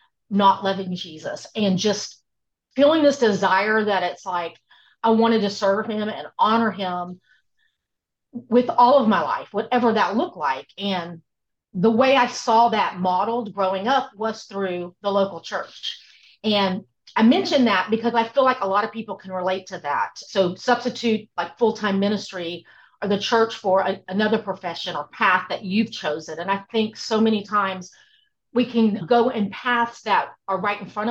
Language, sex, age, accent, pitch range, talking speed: English, female, 40-59, American, 190-230 Hz, 175 wpm